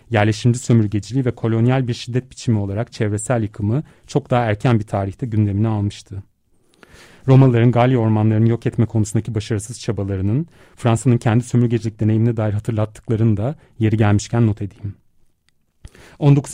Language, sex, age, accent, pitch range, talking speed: Turkish, male, 40-59, native, 105-120 Hz, 135 wpm